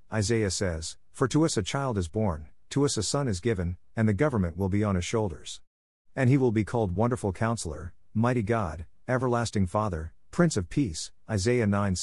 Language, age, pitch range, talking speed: English, 50-69, 90-120 Hz, 190 wpm